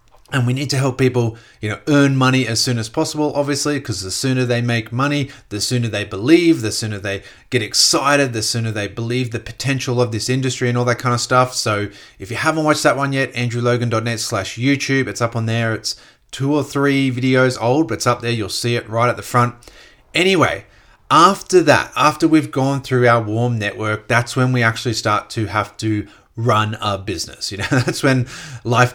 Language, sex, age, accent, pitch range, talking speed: English, male, 30-49, Australian, 115-130 Hz, 215 wpm